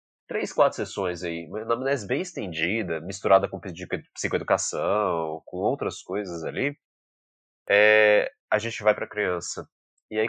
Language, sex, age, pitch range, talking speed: Portuguese, male, 20-39, 95-140 Hz, 135 wpm